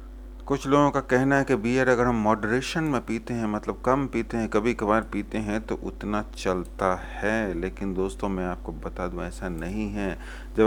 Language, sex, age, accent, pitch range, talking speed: English, male, 30-49, Indian, 100-120 Hz, 190 wpm